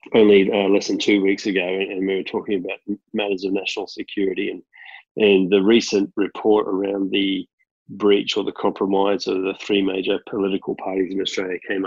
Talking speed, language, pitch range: 180 wpm, English, 95-105 Hz